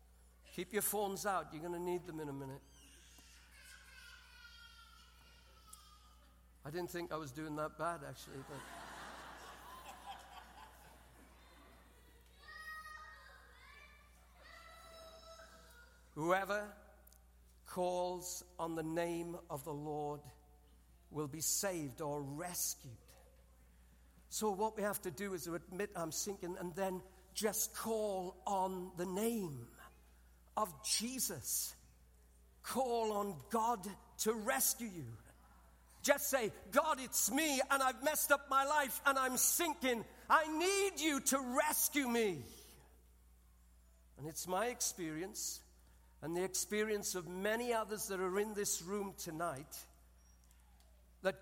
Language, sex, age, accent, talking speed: English, male, 60-79, British, 115 wpm